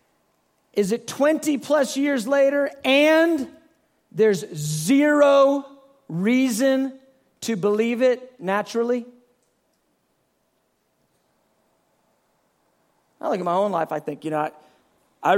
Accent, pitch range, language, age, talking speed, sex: American, 180-255 Hz, English, 40-59, 100 wpm, male